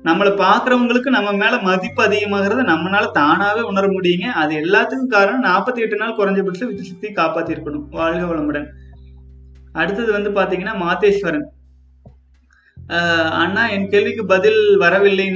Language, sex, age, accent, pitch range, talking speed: Tamil, male, 20-39, native, 165-205 Hz, 110 wpm